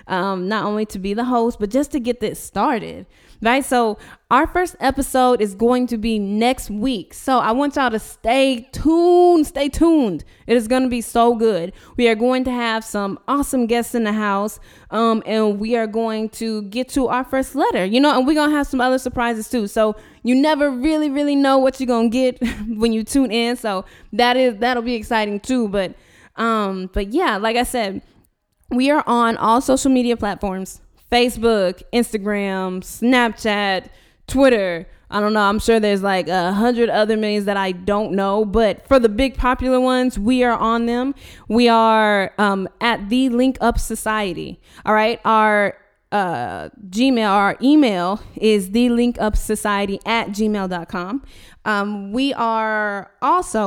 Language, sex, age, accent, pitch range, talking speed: English, female, 20-39, American, 210-255 Hz, 180 wpm